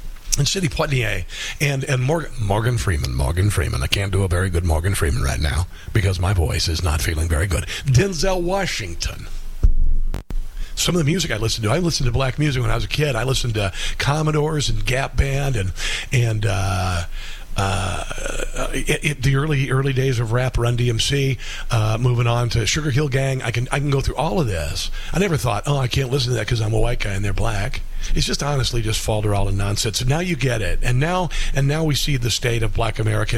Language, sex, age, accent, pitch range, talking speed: English, male, 50-69, American, 110-145 Hz, 225 wpm